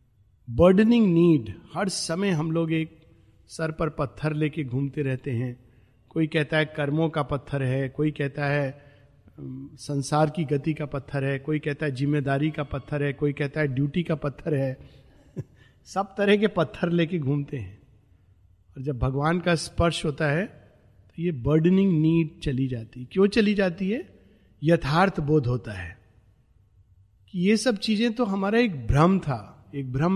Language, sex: Hindi, male